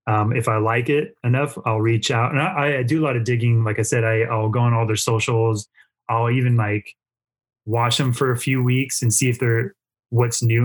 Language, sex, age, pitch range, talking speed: English, male, 20-39, 110-135 Hz, 235 wpm